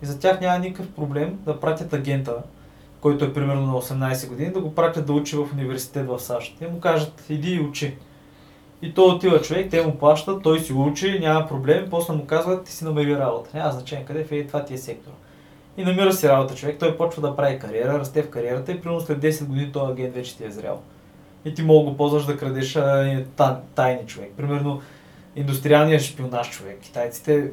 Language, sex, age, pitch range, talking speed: Bulgarian, male, 20-39, 135-165 Hz, 225 wpm